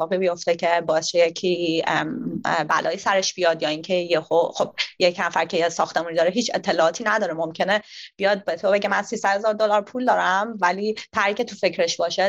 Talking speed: 180 wpm